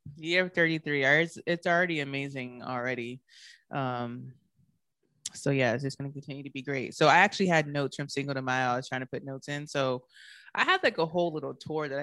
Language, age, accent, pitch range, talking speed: English, 20-39, American, 130-155 Hz, 215 wpm